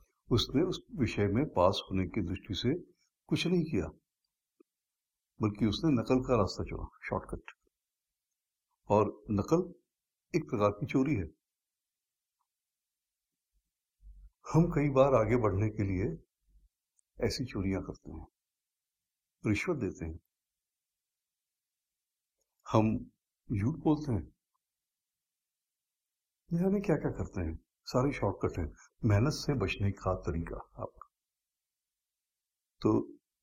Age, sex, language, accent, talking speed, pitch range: 60-79, male, Hindi, native, 105 wpm, 95-135 Hz